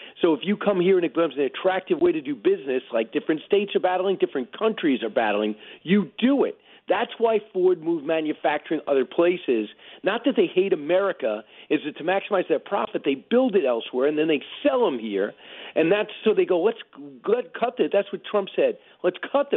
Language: English